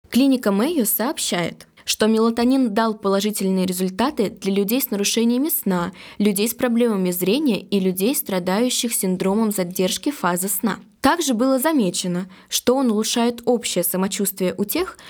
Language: Russian